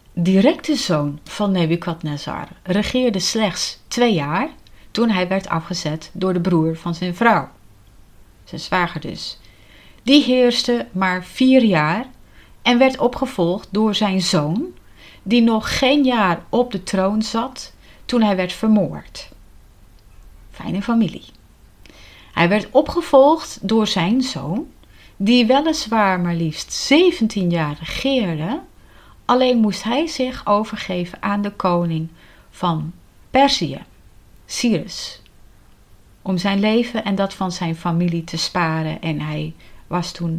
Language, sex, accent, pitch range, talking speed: Dutch, female, Dutch, 160-225 Hz, 125 wpm